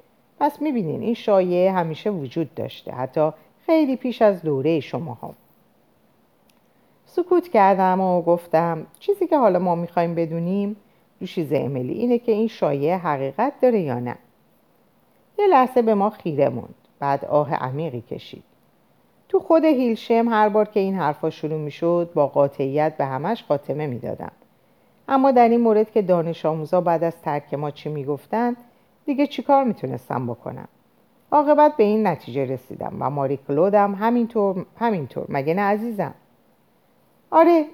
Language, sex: Persian, female